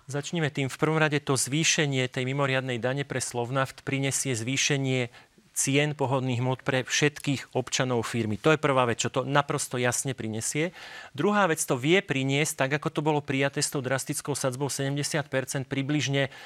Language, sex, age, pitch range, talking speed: Slovak, male, 40-59, 135-170 Hz, 170 wpm